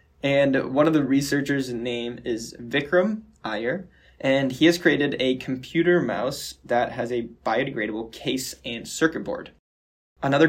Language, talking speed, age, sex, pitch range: English, 145 wpm, 10-29, male, 120-145 Hz